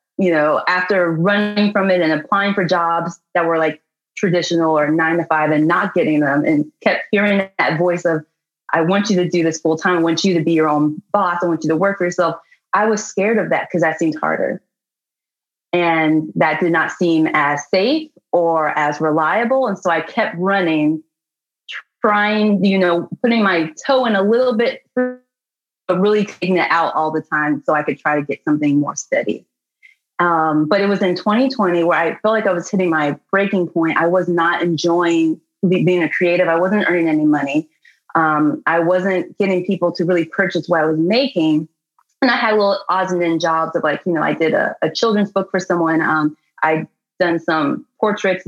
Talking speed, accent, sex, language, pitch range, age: 205 wpm, American, female, English, 160-195 Hz, 30-49